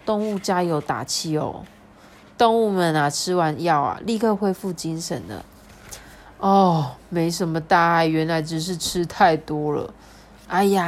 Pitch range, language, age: 160-210 Hz, Chinese, 20-39